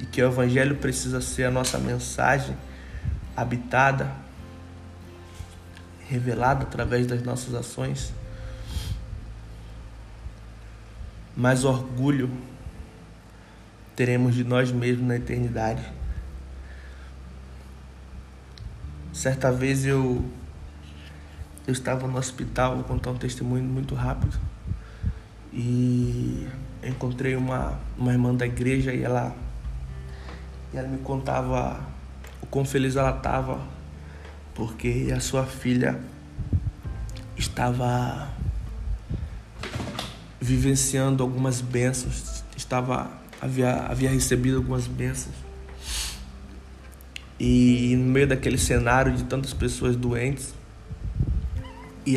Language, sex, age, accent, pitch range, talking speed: Portuguese, male, 20-39, Brazilian, 85-130 Hz, 90 wpm